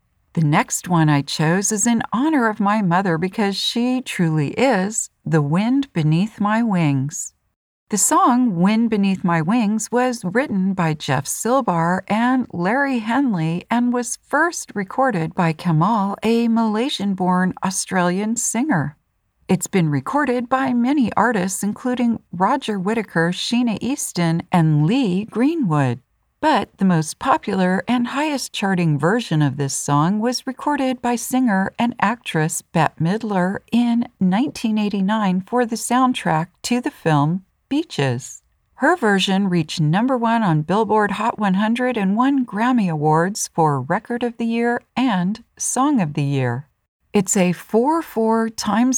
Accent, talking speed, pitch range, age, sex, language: American, 135 wpm, 170-245 Hz, 50-69, female, English